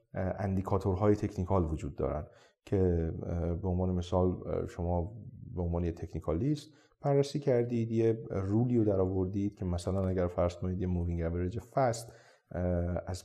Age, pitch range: 30-49, 90-130 Hz